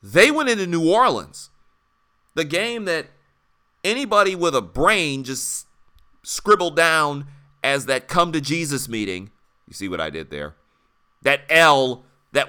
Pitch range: 130-180 Hz